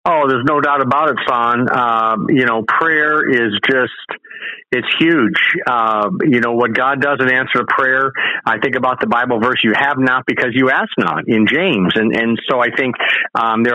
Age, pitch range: 50-69, 115-135 Hz